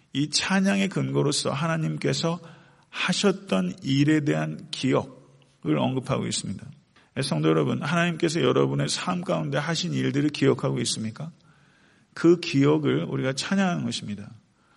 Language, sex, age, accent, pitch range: Korean, male, 40-59, native, 110-160 Hz